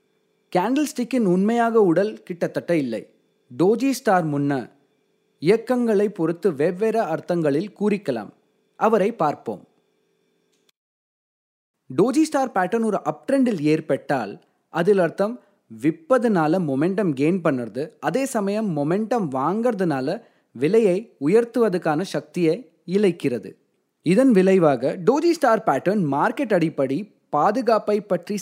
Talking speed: 110 wpm